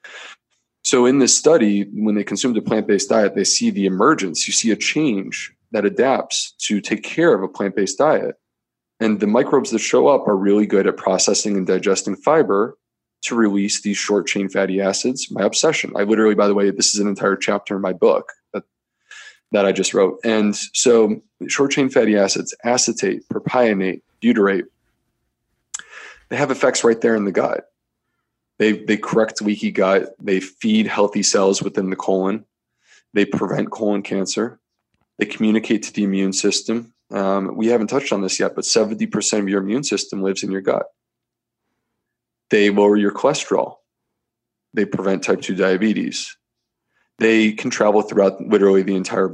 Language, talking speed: English, 170 wpm